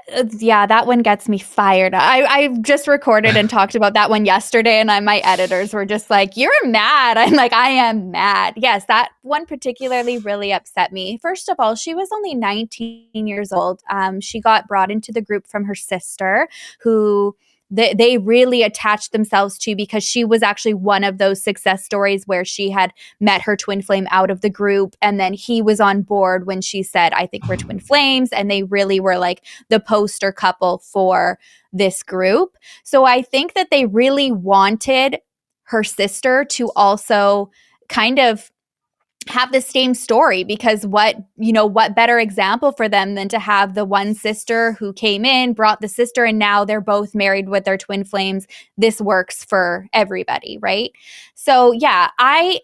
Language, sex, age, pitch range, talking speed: English, female, 20-39, 195-240 Hz, 185 wpm